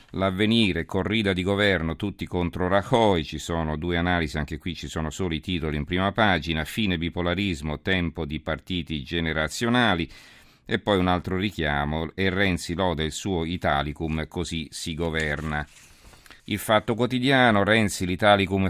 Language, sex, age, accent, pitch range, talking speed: Italian, male, 50-69, native, 80-100 Hz, 150 wpm